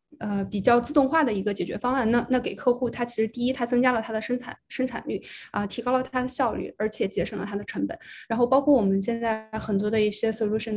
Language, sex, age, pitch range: Chinese, female, 20-39, 200-240 Hz